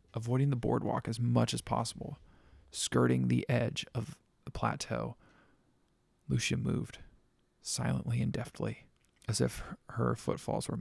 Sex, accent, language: male, American, English